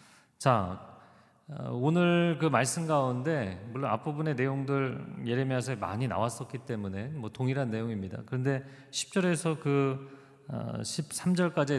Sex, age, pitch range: male, 40-59, 115-165 Hz